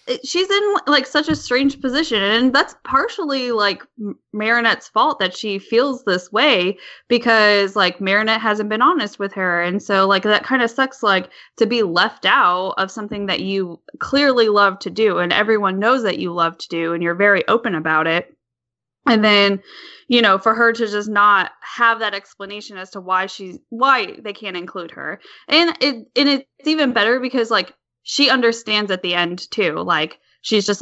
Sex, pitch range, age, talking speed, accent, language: female, 195-245 Hz, 10-29, 190 wpm, American, English